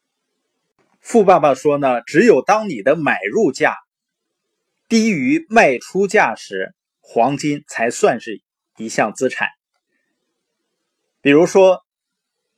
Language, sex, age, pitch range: Chinese, male, 20-39, 135-225 Hz